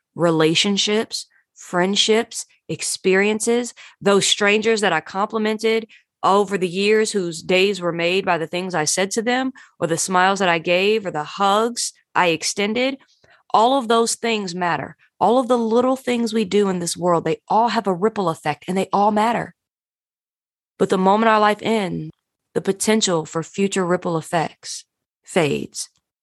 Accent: American